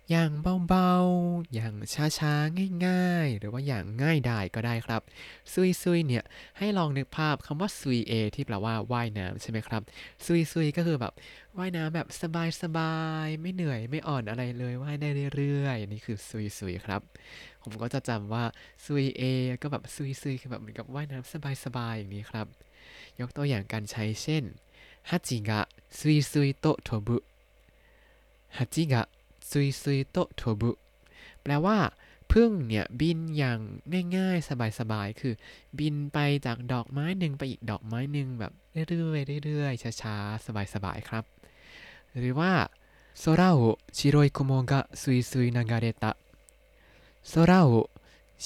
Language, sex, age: Thai, male, 20-39